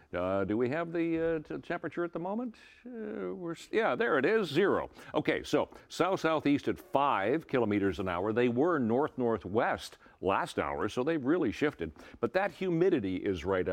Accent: American